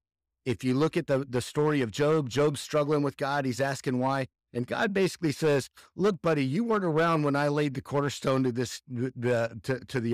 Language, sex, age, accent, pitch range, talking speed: English, male, 50-69, American, 100-135 Hz, 215 wpm